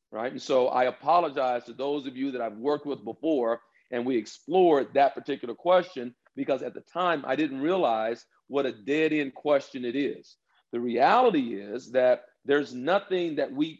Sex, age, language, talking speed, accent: male, 50-69, English, 185 wpm, American